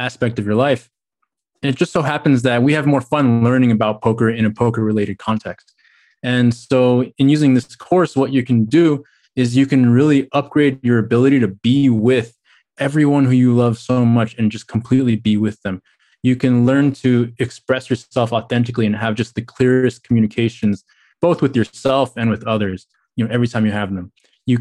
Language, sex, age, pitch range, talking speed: English, male, 20-39, 110-130 Hz, 200 wpm